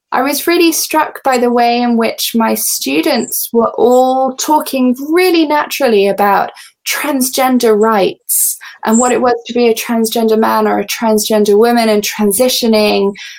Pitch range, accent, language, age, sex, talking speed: 205-250 Hz, British, Italian, 10-29, female, 150 wpm